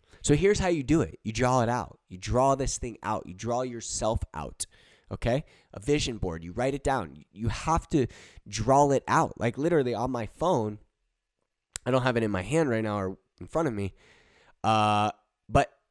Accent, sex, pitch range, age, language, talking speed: American, male, 105-160 Hz, 20-39, English, 205 wpm